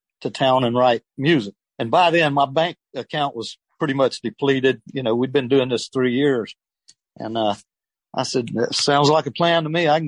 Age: 50-69